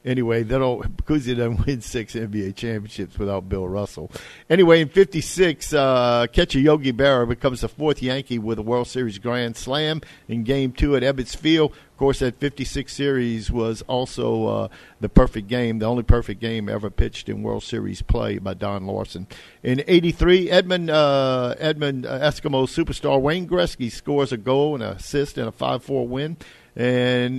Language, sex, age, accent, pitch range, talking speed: English, male, 50-69, American, 110-140 Hz, 175 wpm